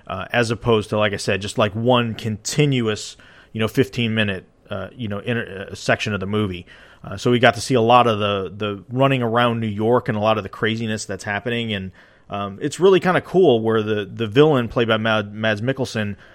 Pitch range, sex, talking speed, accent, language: 105-125 Hz, male, 225 wpm, American, English